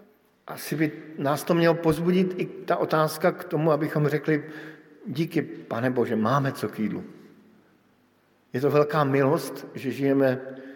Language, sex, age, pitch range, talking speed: Slovak, male, 50-69, 125-155 Hz, 145 wpm